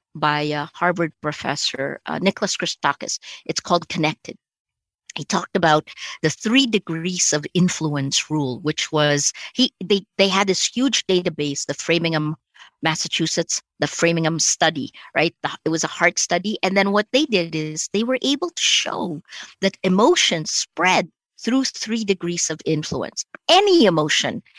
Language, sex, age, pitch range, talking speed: English, female, 50-69, 160-225 Hz, 150 wpm